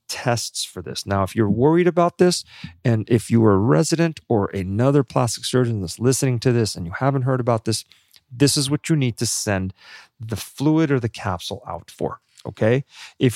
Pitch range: 105-135 Hz